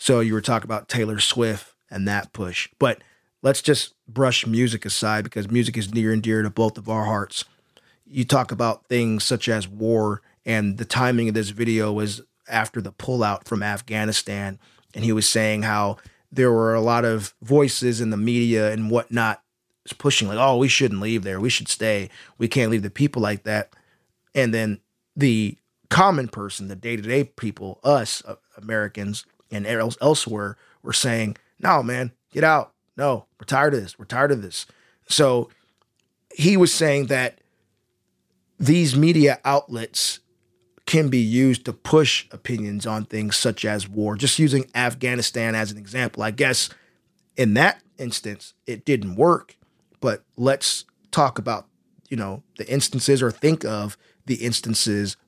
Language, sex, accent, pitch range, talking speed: English, male, American, 105-130 Hz, 165 wpm